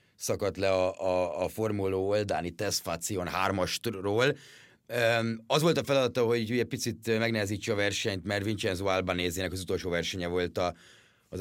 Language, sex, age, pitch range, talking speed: Hungarian, male, 30-49, 90-110 Hz, 140 wpm